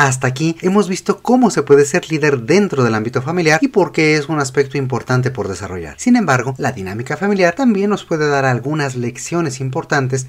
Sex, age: male, 40-59